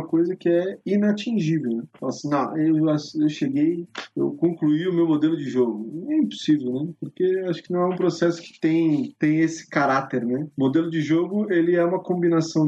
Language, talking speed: Portuguese, 205 wpm